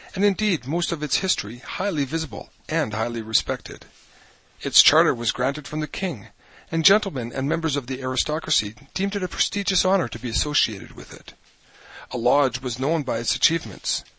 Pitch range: 125-165 Hz